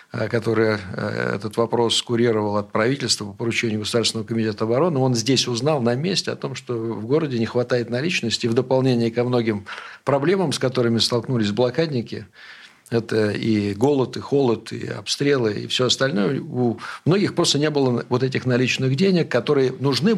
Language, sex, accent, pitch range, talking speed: Russian, male, native, 110-130 Hz, 160 wpm